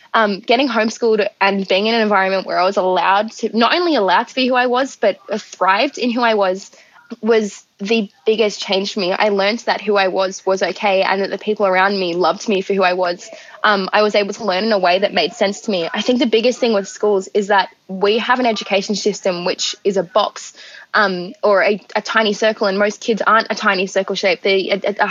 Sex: female